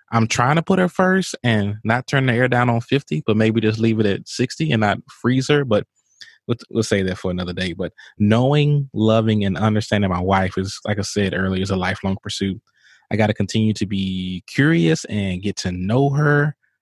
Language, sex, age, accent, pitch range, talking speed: English, male, 20-39, American, 100-125 Hz, 220 wpm